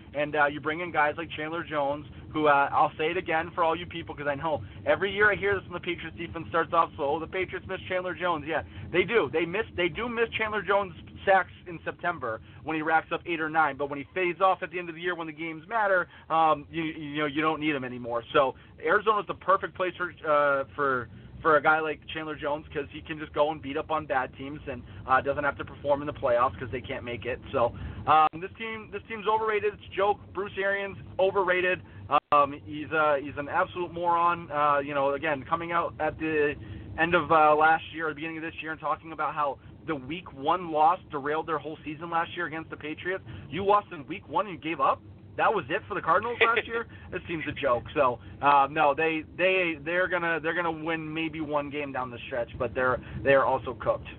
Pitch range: 145-175 Hz